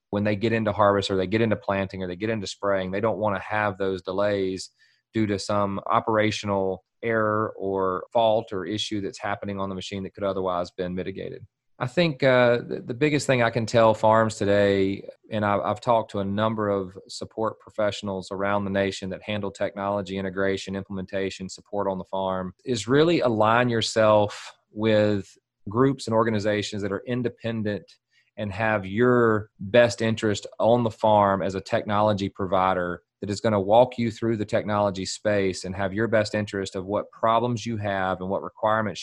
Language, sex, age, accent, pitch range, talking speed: English, male, 30-49, American, 95-115 Hz, 185 wpm